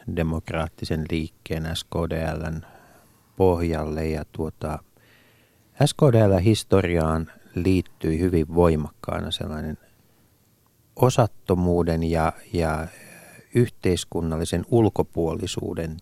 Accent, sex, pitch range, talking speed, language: native, male, 85-110 Hz, 50 wpm, Finnish